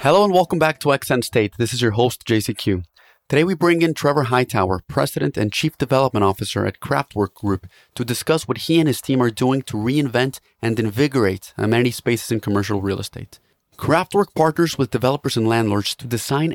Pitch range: 110-140 Hz